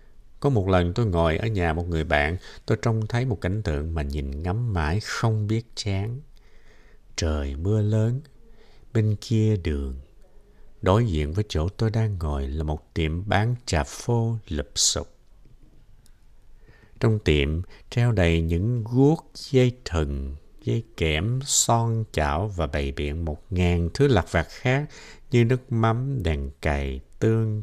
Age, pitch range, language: 60-79, 80-115 Hz, Vietnamese